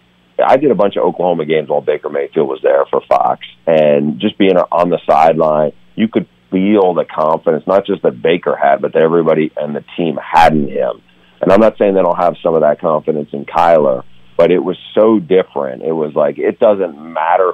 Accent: American